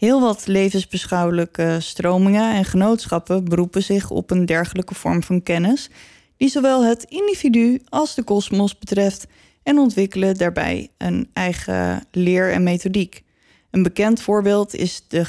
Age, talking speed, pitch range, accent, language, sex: 20-39, 135 wpm, 180-225 Hz, Dutch, Dutch, female